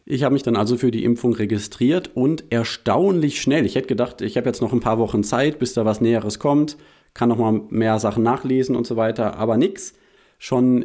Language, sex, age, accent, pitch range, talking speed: German, male, 40-59, German, 105-125 Hz, 220 wpm